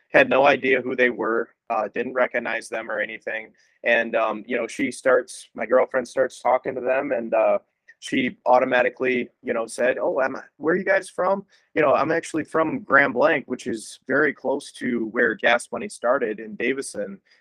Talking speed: 195 wpm